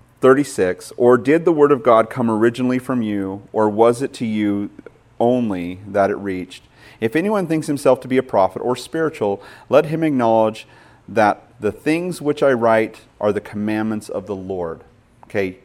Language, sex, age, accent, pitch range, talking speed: English, male, 40-59, American, 110-145 Hz, 175 wpm